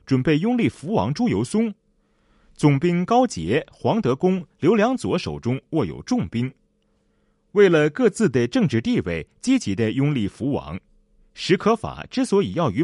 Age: 30-49